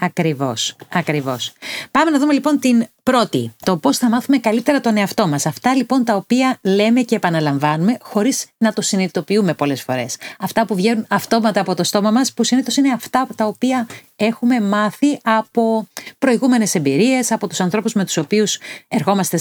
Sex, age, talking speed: female, 40-59, 170 wpm